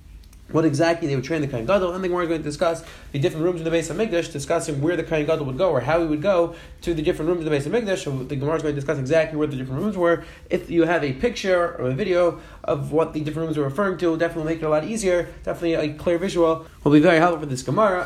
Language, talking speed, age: English, 310 wpm, 20-39